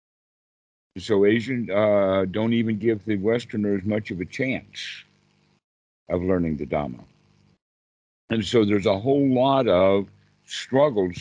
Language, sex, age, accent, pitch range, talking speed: English, male, 60-79, American, 95-120 Hz, 130 wpm